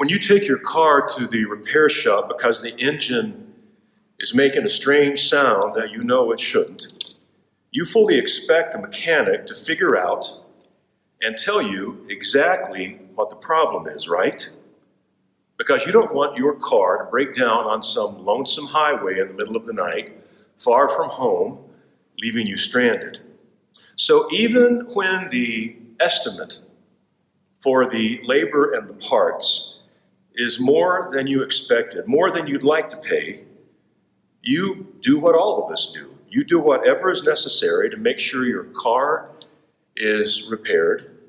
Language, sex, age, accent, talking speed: English, male, 50-69, American, 155 wpm